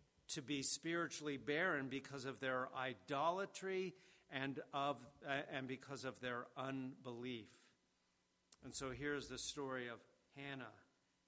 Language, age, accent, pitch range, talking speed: English, 50-69, American, 120-140 Hz, 120 wpm